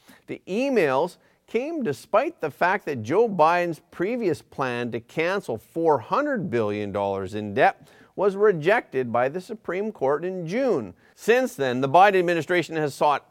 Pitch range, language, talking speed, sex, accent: 125-195 Hz, English, 145 wpm, male, American